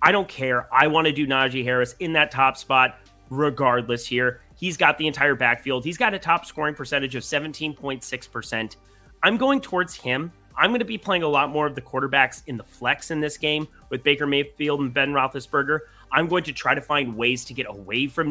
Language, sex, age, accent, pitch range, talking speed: English, male, 30-49, American, 125-165 Hz, 220 wpm